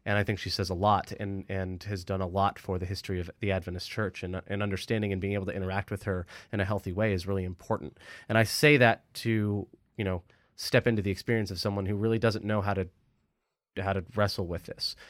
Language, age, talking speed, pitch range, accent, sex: English, 30-49, 245 wpm, 95-105 Hz, American, male